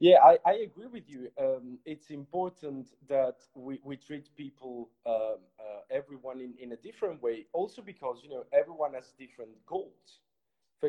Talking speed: 170 wpm